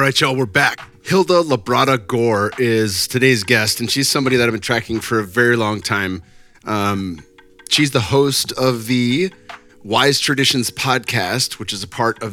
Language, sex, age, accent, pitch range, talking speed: English, male, 30-49, American, 105-125 Hz, 180 wpm